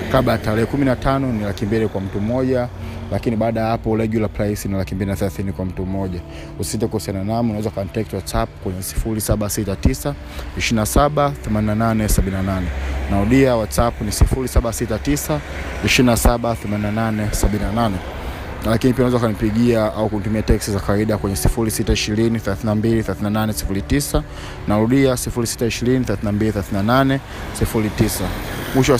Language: Swahili